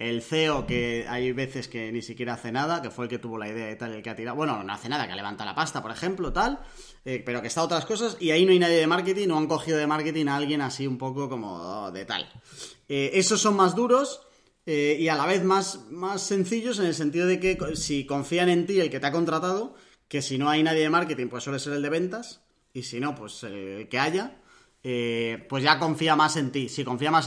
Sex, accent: male, Spanish